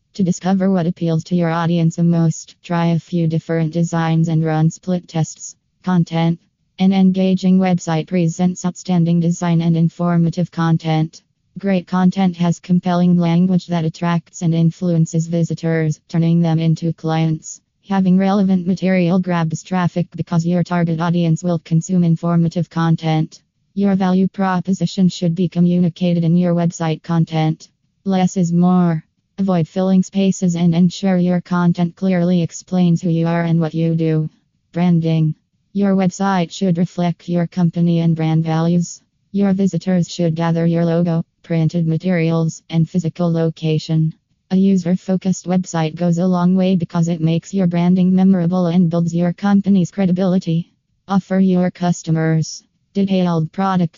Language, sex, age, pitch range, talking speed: English, female, 20-39, 165-180 Hz, 140 wpm